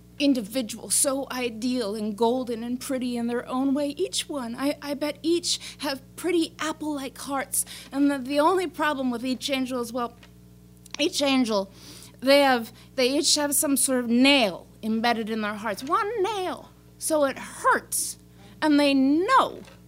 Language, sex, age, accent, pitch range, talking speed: English, female, 30-49, American, 240-345 Hz, 165 wpm